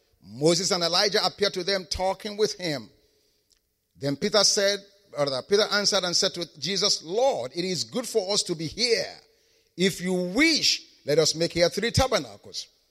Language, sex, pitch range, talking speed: English, male, 160-215 Hz, 170 wpm